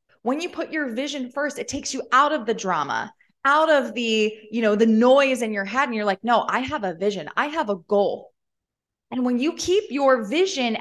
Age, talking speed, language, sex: 20-39, 230 wpm, English, female